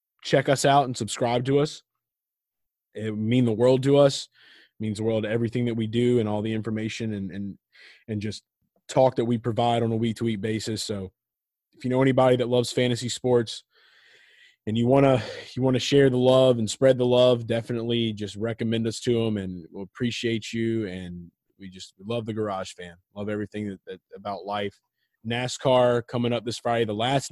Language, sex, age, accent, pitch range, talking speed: English, male, 20-39, American, 110-125 Hz, 210 wpm